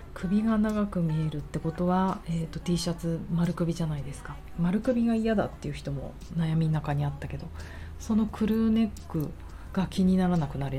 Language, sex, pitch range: Japanese, female, 145-185 Hz